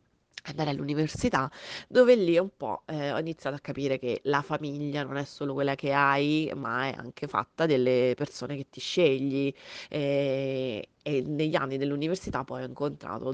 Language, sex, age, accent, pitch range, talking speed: Italian, female, 30-49, native, 135-155 Hz, 165 wpm